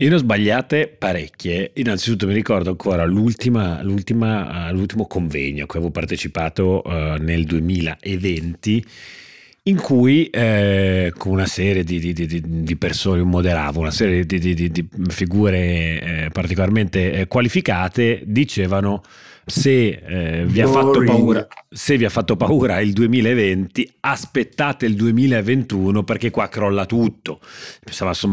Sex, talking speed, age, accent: male, 115 wpm, 30-49, native